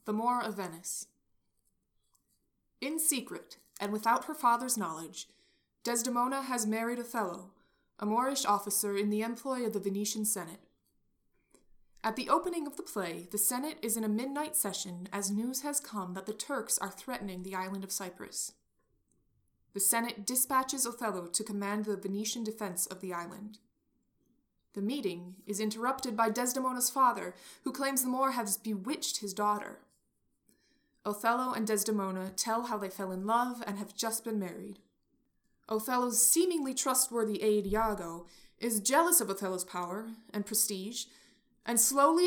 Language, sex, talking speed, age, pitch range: English, female, 150 wpm, 20-39, 200-245 Hz